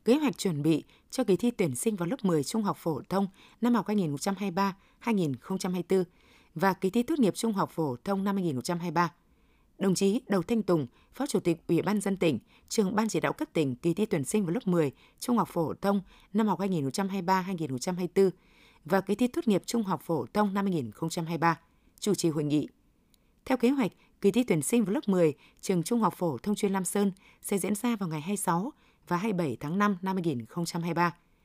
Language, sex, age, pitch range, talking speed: Vietnamese, female, 20-39, 170-215 Hz, 215 wpm